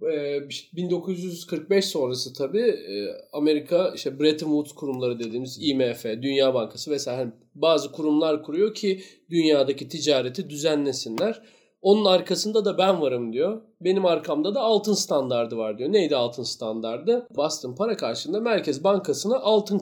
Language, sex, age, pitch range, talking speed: Turkish, male, 40-59, 135-210 Hz, 125 wpm